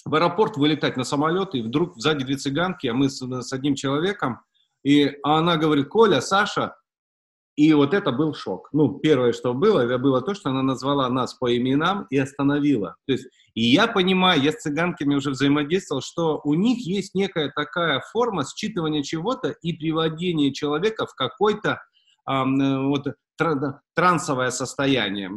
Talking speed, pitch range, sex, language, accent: 160 wpm, 140-185 Hz, male, Russian, native